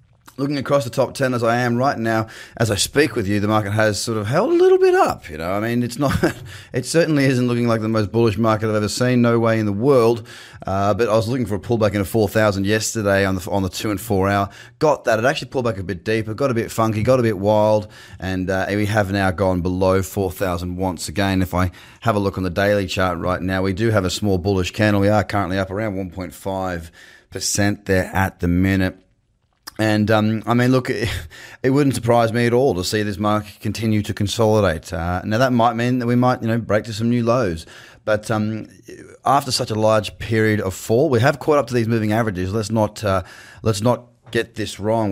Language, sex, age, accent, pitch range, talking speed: English, male, 20-39, Australian, 95-115 Hz, 240 wpm